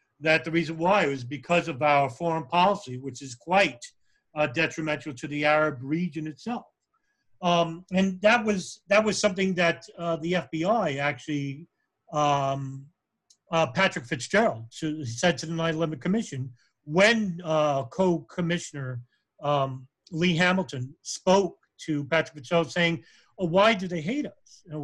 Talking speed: 145 wpm